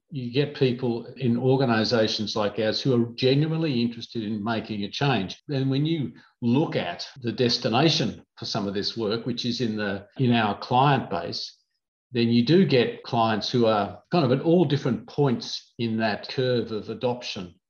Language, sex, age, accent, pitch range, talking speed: English, male, 50-69, Australian, 110-130 Hz, 180 wpm